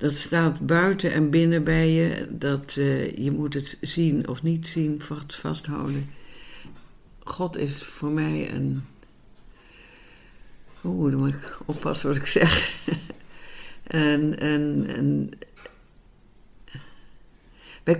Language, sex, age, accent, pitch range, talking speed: Dutch, female, 60-79, Dutch, 140-165 Hz, 115 wpm